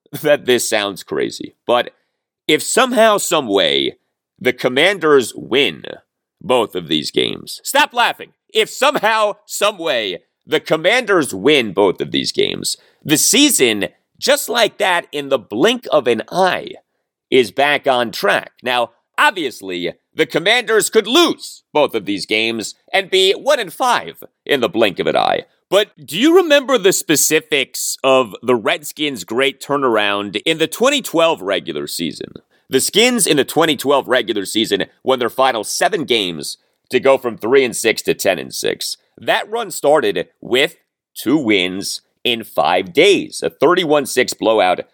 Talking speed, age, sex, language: 155 wpm, 40-59, male, English